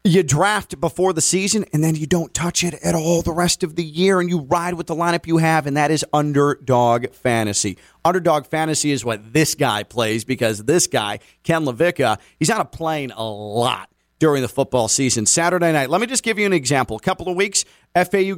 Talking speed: 220 wpm